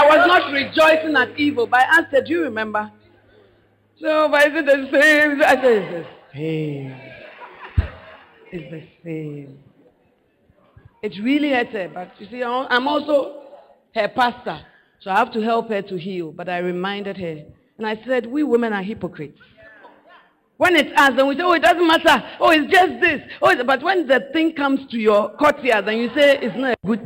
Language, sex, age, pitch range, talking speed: English, female, 50-69, 185-270 Hz, 195 wpm